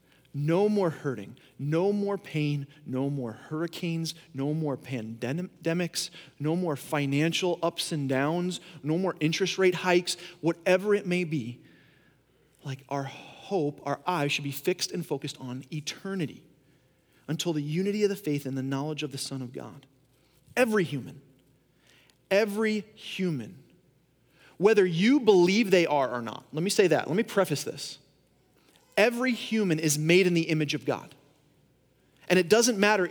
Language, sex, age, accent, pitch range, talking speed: English, male, 30-49, American, 140-180 Hz, 155 wpm